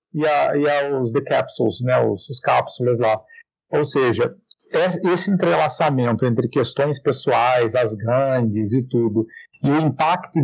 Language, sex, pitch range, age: Portuguese, male, 125-160 Hz, 50-69